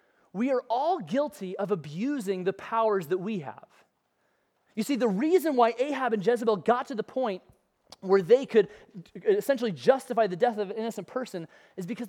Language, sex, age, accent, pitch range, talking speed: English, male, 30-49, American, 170-235 Hz, 180 wpm